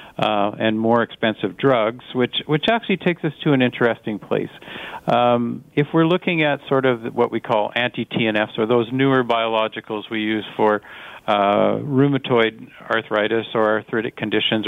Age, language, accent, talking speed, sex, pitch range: 50-69, English, American, 155 wpm, male, 110-145 Hz